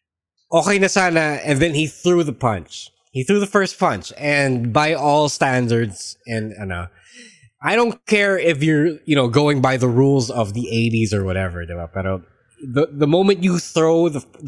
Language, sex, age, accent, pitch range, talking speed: English, male, 20-39, Filipino, 110-150 Hz, 180 wpm